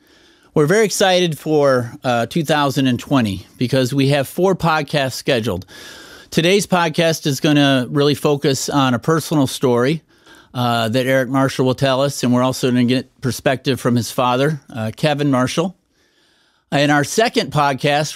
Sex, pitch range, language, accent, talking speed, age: male, 125-155 Hz, English, American, 155 wpm, 50-69